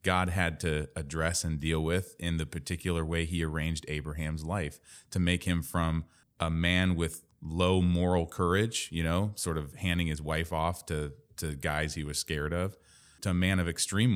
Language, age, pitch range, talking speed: English, 30-49, 80-95 Hz, 190 wpm